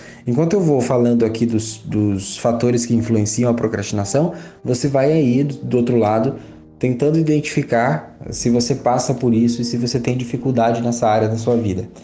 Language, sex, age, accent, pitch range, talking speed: Portuguese, male, 20-39, Brazilian, 115-135 Hz, 175 wpm